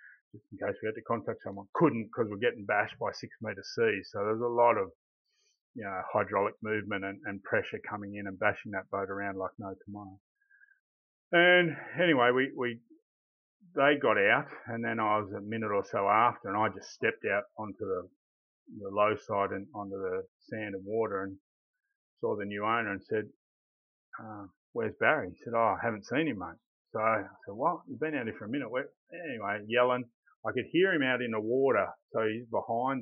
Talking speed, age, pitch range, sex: 205 wpm, 30-49, 100-130 Hz, male